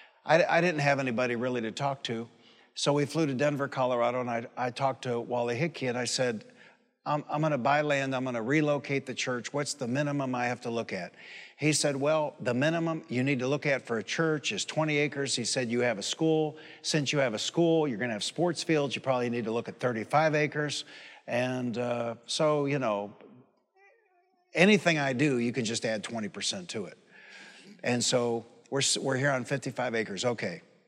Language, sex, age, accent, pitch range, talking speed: English, male, 60-79, American, 125-165 Hz, 210 wpm